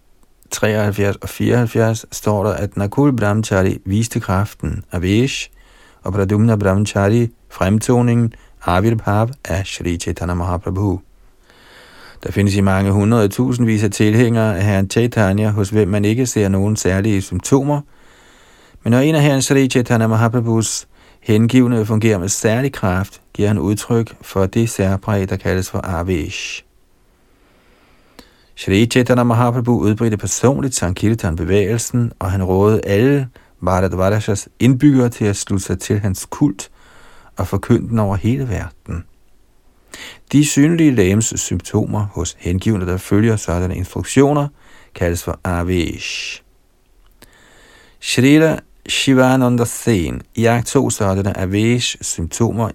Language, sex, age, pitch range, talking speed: Danish, male, 40-59, 95-115 Hz, 125 wpm